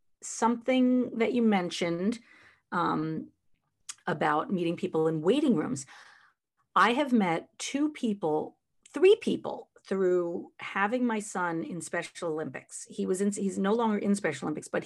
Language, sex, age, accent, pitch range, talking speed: English, female, 40-59, American, 170-235 Hz, 140 wpm